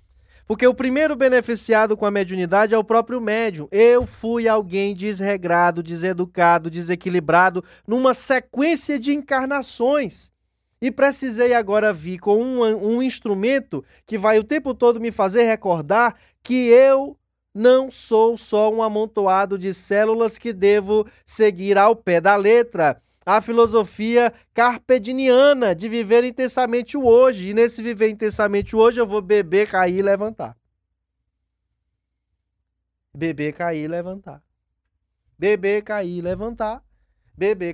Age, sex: 20-39, male